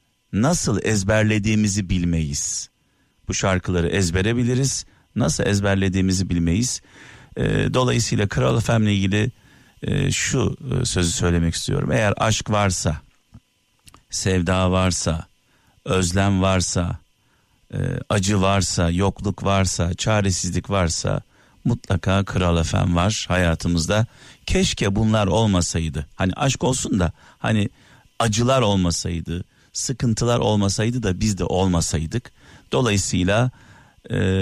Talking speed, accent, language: 100 wpm, native, Turkish